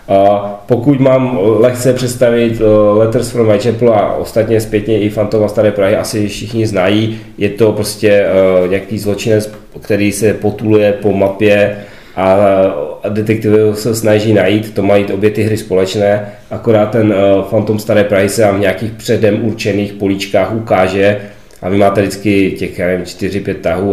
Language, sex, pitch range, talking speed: Czech, male, 100-110 Hz, 150 wpm